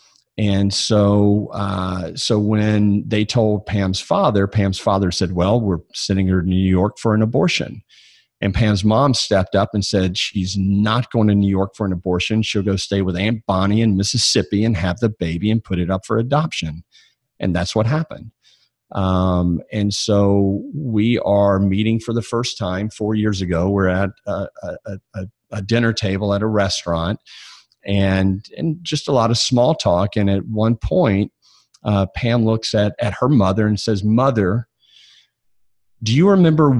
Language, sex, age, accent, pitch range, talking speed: English, male, 50-69, American, 95-115 Hz, 180 wpm